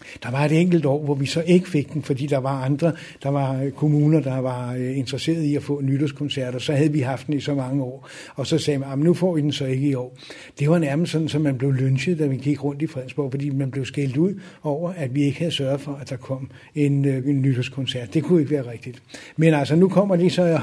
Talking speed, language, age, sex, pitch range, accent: 270 wpm, Danish, 60-79, male, 140-170 Hz, native